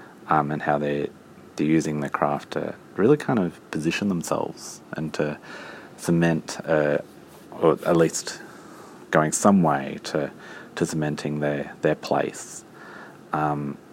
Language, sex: English, male